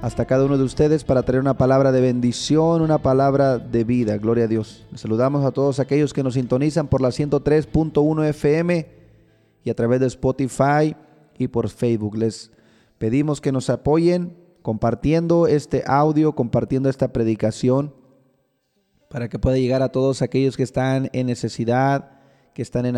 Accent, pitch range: Mexican, 120-150 Hz